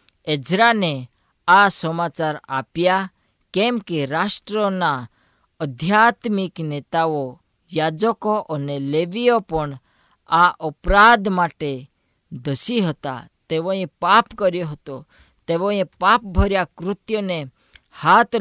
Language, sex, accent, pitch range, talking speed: Gujarati, female, native, 140-185 Hz, 85 wpm